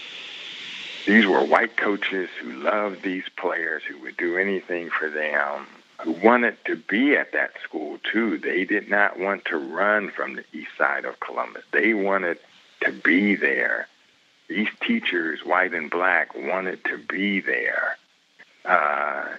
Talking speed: 150 wpm